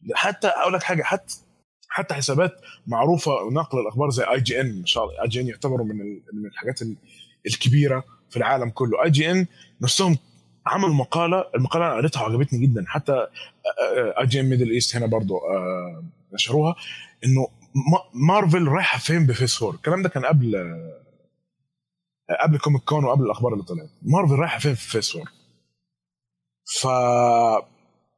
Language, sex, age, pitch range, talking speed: Arabic, male, 20-39, 115-155 Hz, 135 wpm